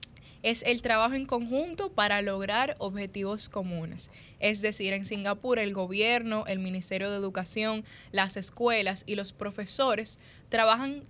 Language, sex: Spanish, female